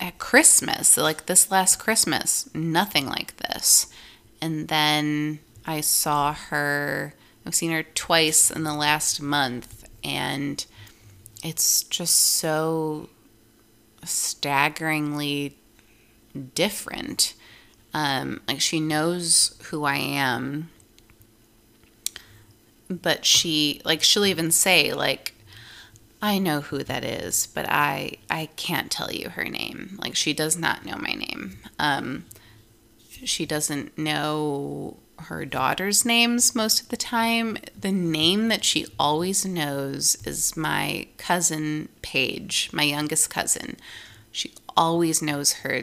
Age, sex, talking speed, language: 20-39, female, 120 wpm, English